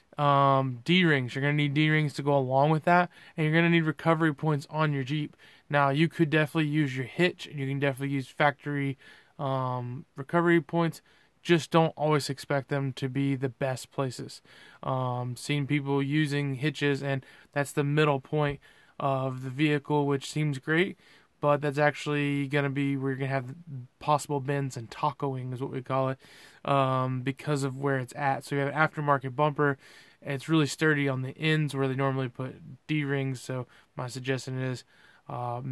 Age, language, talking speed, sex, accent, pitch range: 20-39, English, 185 wpm, male, American, 135-150 Hz